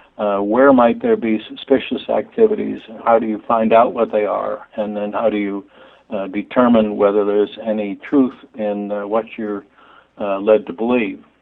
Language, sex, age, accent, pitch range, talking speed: English, male, 60-79, American, 105-125 Hz, 180 wpm